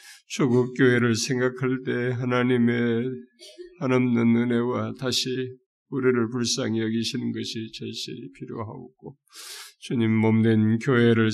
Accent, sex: native, male